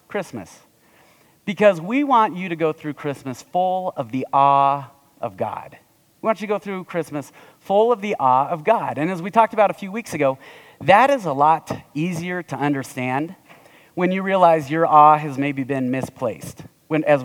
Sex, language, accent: male, English, American